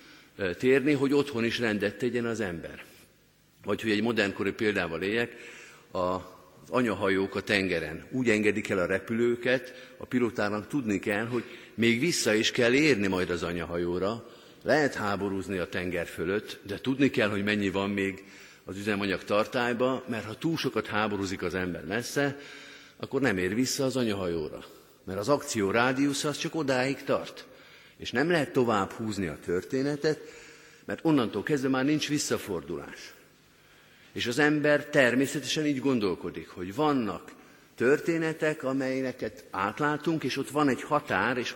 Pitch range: 100-135 Hz